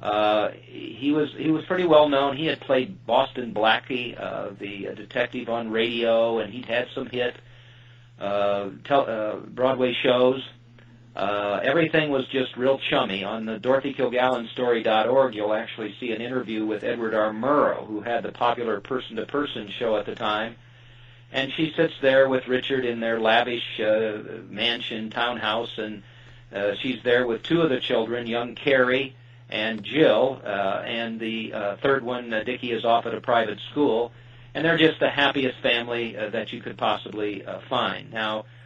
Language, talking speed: English, 170 wpm